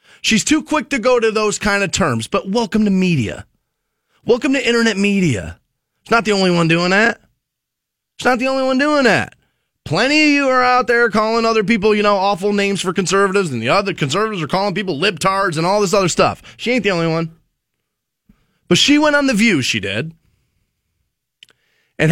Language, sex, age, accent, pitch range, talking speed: English, male, 30-49, American, 140-215 Hz, 200 wpm